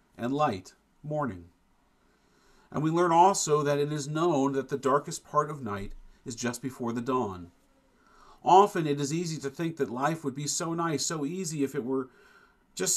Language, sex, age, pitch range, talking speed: English, male, 40-59, 125-160 Hz, 185 wpm